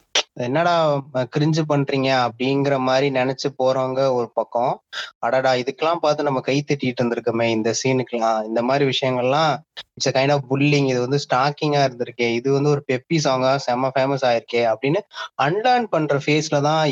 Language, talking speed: Tamil, 145 wpm